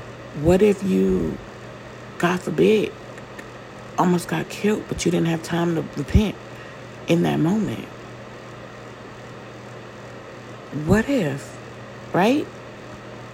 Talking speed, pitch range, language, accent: 95 wpm, 130-170 Hz, English, American